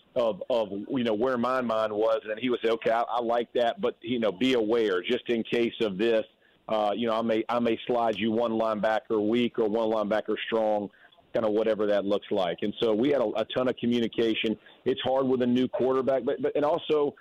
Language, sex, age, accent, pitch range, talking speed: English, male, 40-59, American, 110-125 Hz, 235 wpm